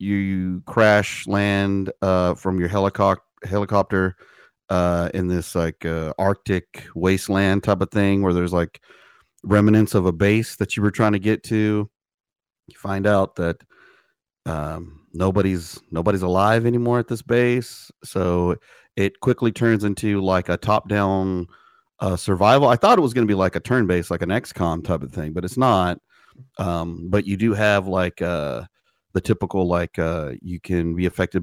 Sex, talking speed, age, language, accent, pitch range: male, 170 wpm, 30-49, English, American, 85-105 Hz